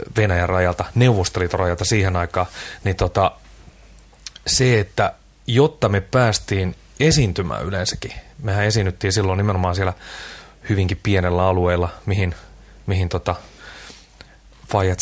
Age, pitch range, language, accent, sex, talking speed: 30-49, 95-110 Hz, Finnish, native, male, 105 wpm